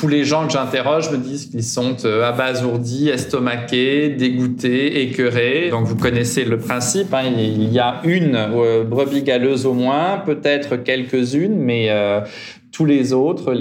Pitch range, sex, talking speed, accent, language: 110-130 Hz, male, 155 wpm, French, French